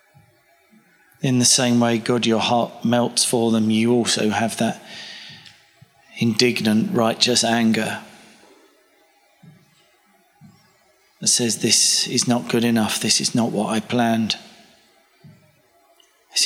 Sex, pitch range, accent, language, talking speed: male, 110-120 Hz, British, English, 115 wpm